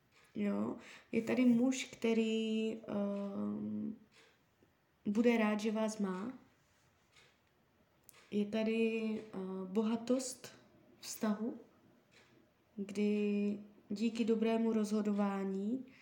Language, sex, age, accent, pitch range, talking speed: Czech, female, 20-39, native, 190-225 Hz, 75 wpm